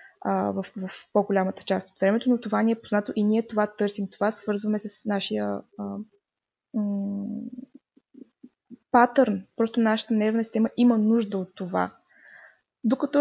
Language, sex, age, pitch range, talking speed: Bulgarian, female, 20-39, 195-225 Hz, 140 wpm